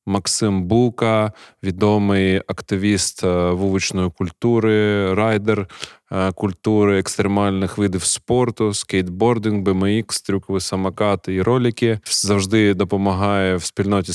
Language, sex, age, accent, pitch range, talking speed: Ukrainian, male, 20-39, native, 95-110 Hz, 90 wpm